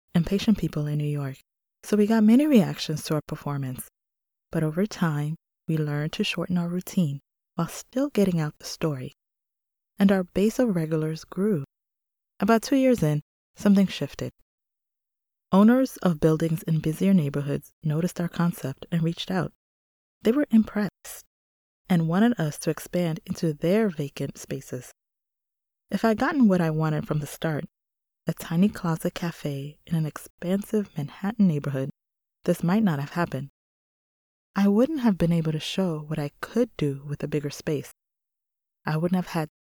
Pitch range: 150-195 Hz